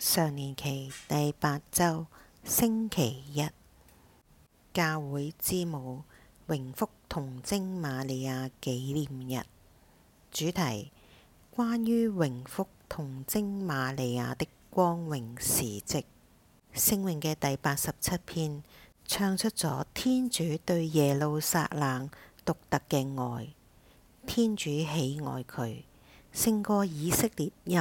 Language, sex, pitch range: English, female, 130-175 Hz